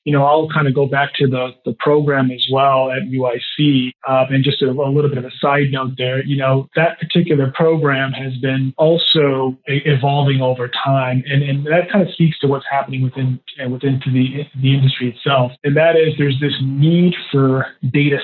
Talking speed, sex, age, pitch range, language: 205 wpm, male, 30-49, 130-145 Hz, English